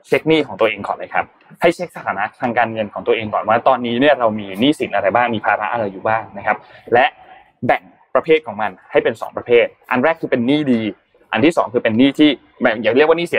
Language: Thai